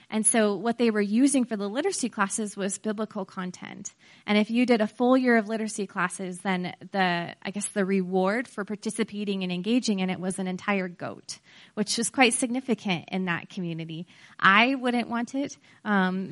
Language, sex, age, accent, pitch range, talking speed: English, female, 20-39, American, 185-220 Hz, 190 wpm